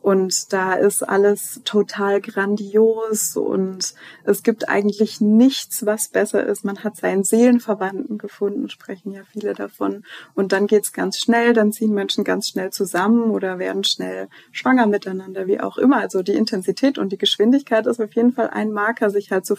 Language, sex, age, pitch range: German, female, 20-39, 195-225 Hz